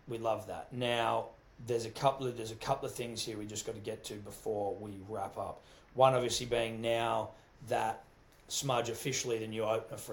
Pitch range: 110-135 Hz